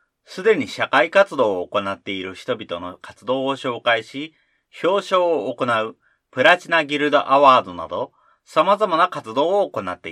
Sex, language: male, Japanese